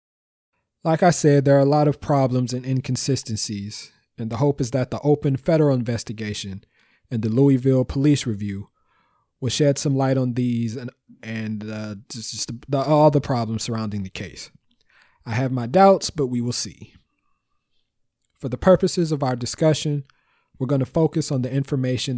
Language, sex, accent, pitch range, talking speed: English, male, American, 115-145 Hz, 175 wpm